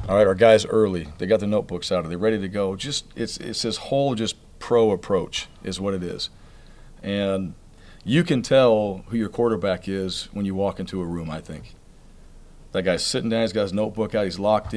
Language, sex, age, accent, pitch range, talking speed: English, male, 40-59, American, 95-110 Hz, 215 wpm